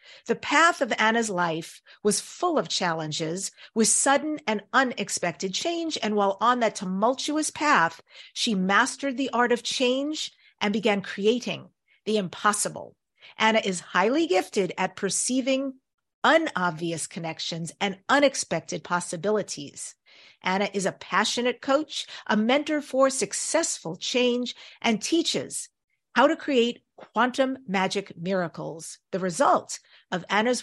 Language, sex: English, female